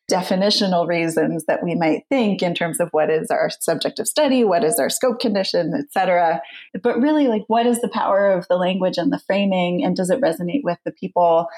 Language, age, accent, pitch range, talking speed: English, 30-49, American, 170-220 Hz, 220 wpm